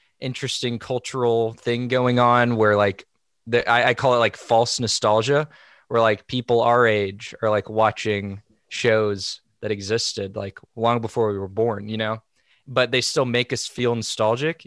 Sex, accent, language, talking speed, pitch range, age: male, American, English, 165 wpm, 105-120 Hz, 20-39